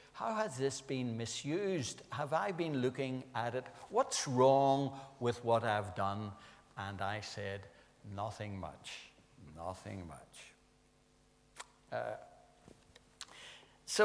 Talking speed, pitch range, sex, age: 110 wpm, 105-135 Hz, male, 60-79